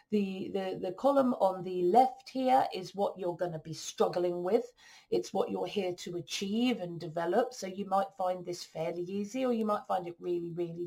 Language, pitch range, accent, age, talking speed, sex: English, 175-220 Hz, British, 40-59, 210 wpm, female